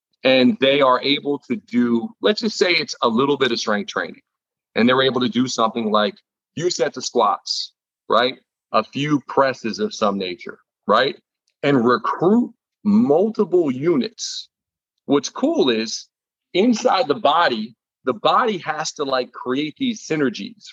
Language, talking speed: English, 155 wpm